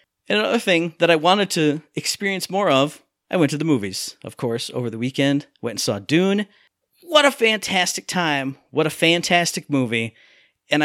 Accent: American